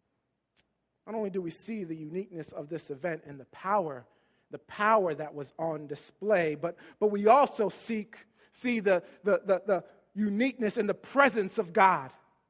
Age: 30-49